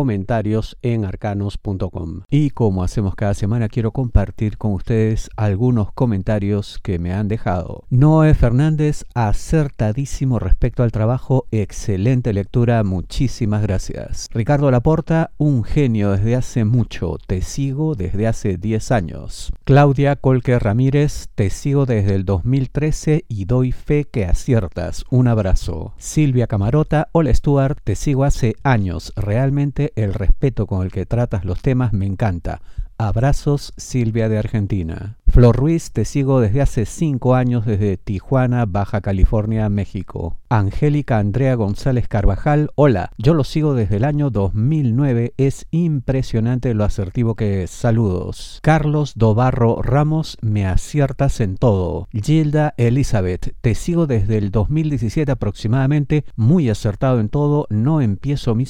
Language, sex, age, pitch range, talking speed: Spanish, male, 50-69, 105-135 Hz, 135 wpm